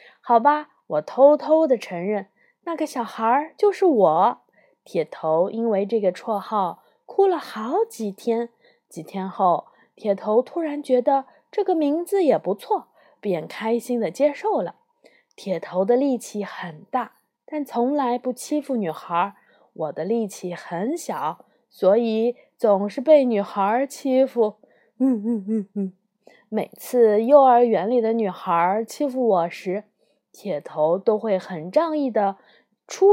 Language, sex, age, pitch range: Chinese, female, 20-39, 200-290 Hz